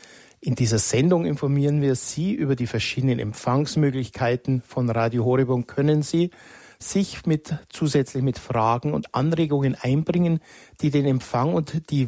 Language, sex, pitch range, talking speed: German, male, 120-145 Hz, 140 wpm